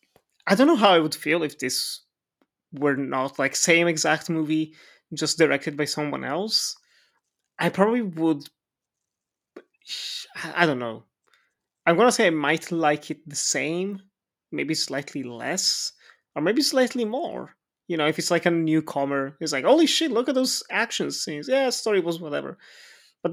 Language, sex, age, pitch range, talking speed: English, male, 20-39, 145-185 Hz, 160 wpm